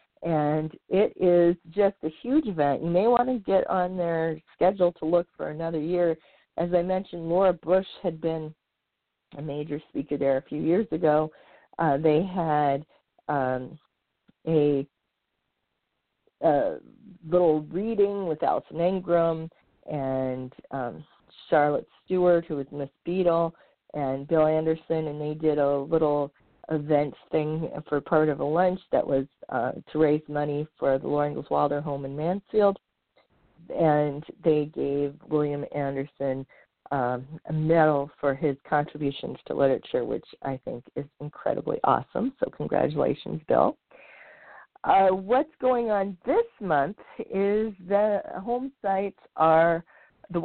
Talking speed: 140 wpm